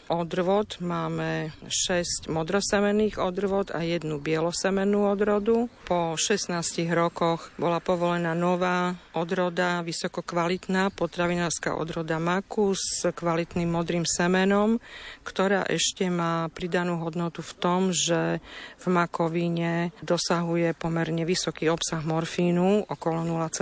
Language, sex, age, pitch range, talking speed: Slovak, female, 50-69, 160-180 Hz, 100 wpm